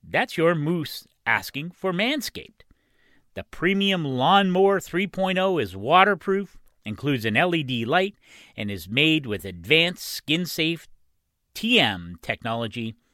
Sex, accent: male, American